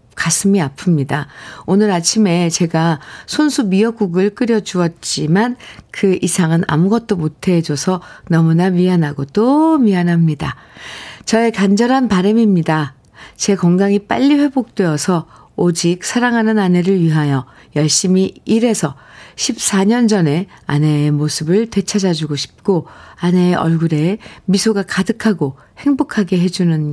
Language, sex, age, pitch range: Korean, female, 50-69, 155-200 Hz